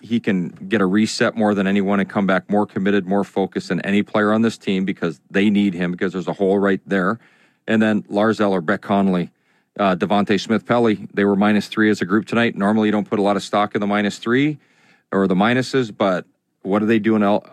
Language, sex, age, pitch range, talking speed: English, male, 40-59, 95-105 Hz, 235 wpm